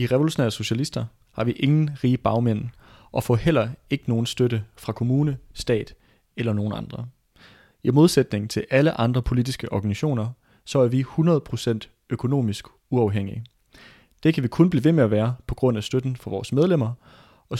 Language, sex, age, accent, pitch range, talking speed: Danish, male, 30-49, native, 100-130 Hz, 170 wpm